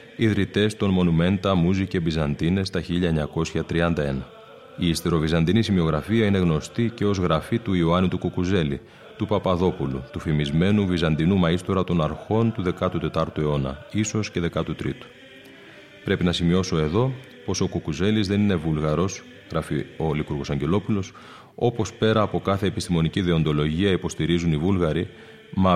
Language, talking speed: Greek, 135 wpm